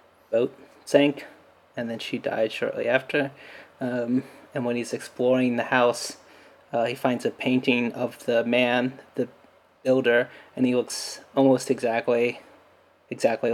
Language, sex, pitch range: English, male, 120-135 Hz